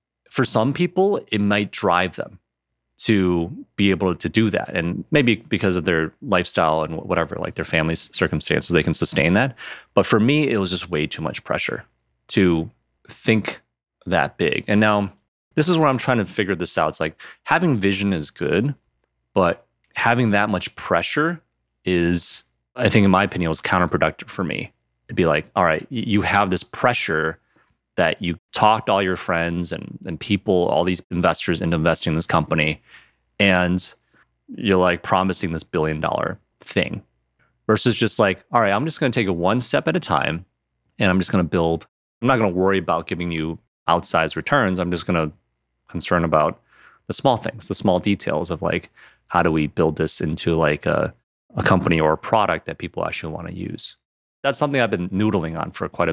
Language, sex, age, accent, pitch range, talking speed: English, male, 30-49, American, 80-105 Hz, 195 wpm